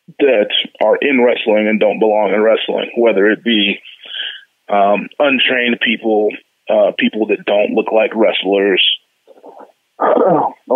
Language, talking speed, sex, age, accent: English, 130 wpm, male, 20-39, American